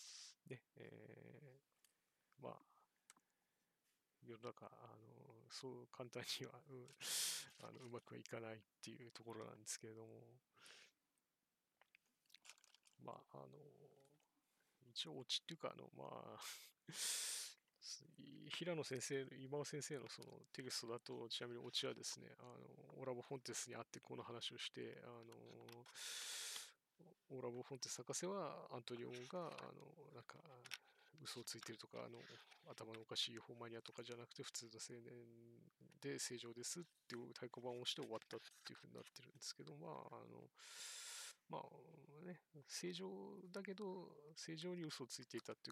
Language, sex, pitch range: Japanese, male, 120-155 Hz